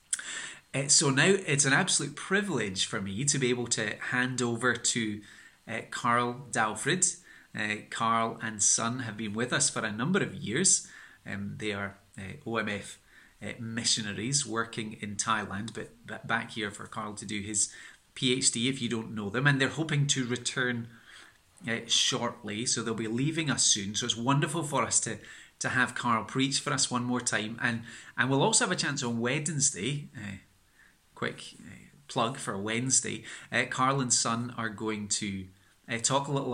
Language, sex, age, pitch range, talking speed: English, male, 30-49, 110-130 Hz, 180 wpm